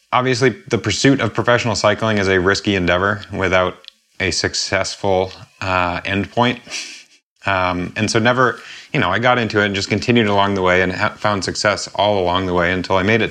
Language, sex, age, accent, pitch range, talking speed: English, male, 30-49, American, 95-110 Hz, 190 wpm